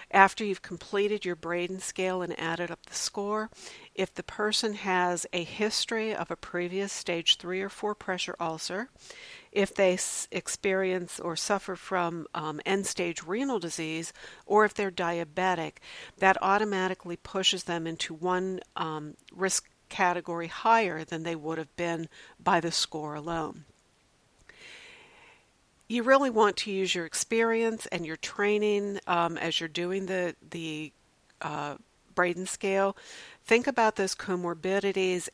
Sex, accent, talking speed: female, American, 140 wpm